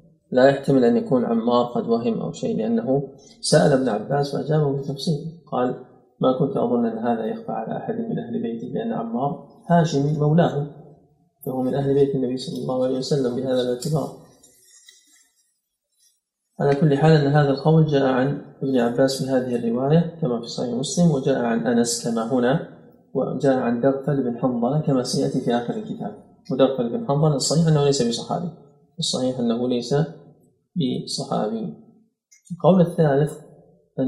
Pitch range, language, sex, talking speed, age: 130-180 Hz, Arabic, male, 155 wpm, 30-49